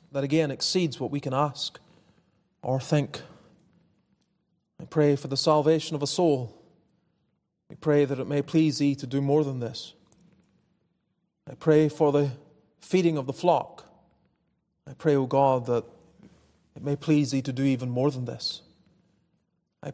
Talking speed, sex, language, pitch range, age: 160 wpm, male, English, 135-170 Hz, 30-49